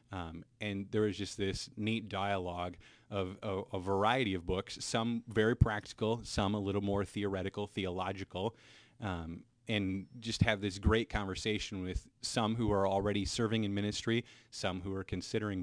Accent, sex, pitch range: American, male, 95-110 Hz